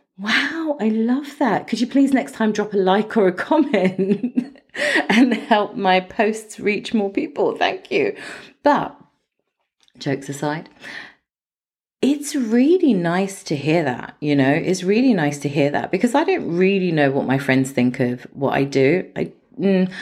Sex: female